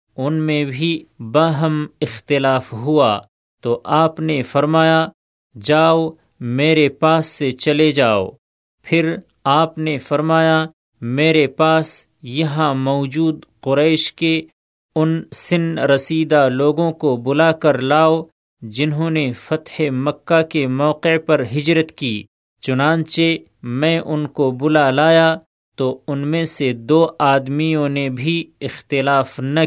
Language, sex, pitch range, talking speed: Urdu, male, 135-160 Hz, 120 wpm